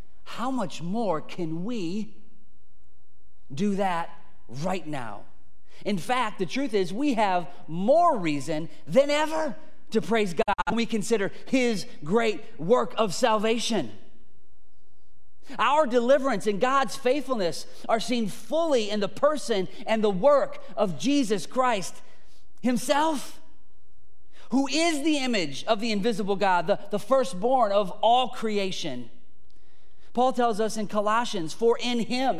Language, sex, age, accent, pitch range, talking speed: English, male, 30-49, American, 200-260 Hz, 130 wpm